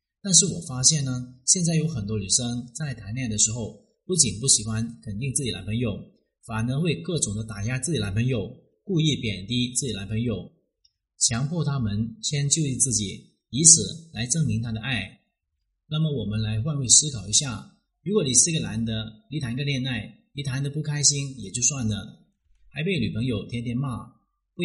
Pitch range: 110-150 Hz